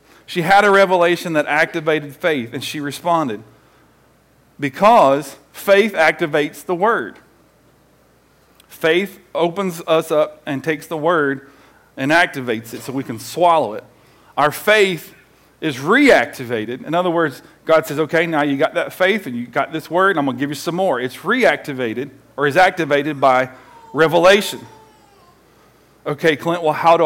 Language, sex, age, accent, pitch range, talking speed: English, male, 40-59, American, 140-180 Hz, 155 wpm